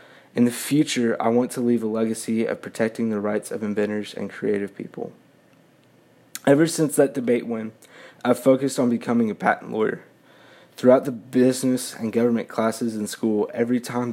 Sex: male